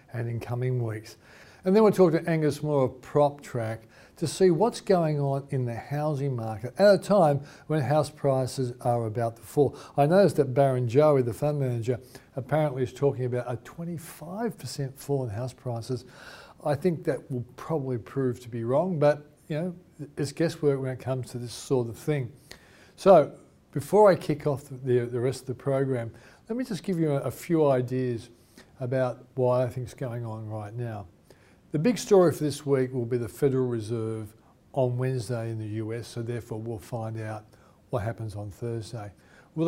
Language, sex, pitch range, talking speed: English, male, 120-150 Hz, 195 wpm